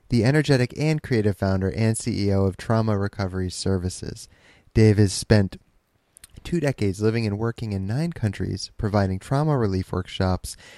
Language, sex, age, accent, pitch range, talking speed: English, male, 20-39, American, 95-115 Hz, 145 wpm